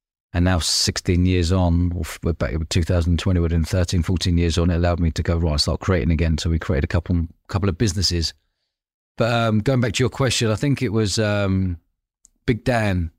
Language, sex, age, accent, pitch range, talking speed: English, male, 30-49, British, 85-105 Hz, 220 wpm